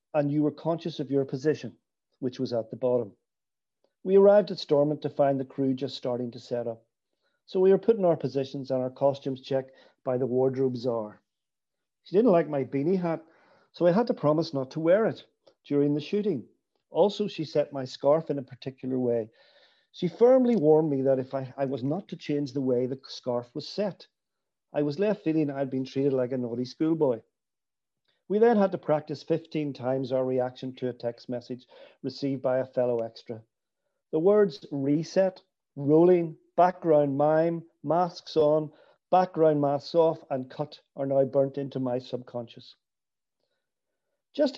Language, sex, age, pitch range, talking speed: English, male, 50-69, 130-165 Hz, 180 wpm